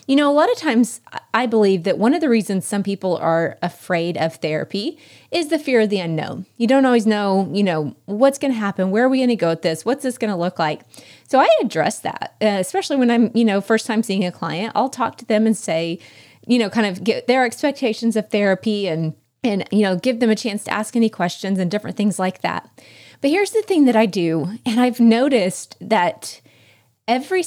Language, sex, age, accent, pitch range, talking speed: English, female, 30-49, American, 180-255 Hz, 235 wpm